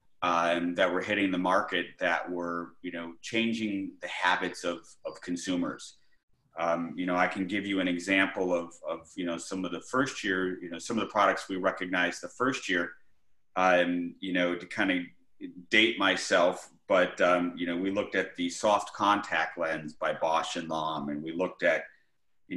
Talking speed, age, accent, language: 195 wpm, 30-49, American, English